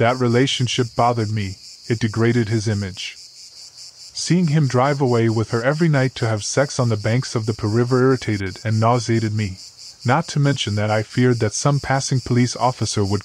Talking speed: 185 wpm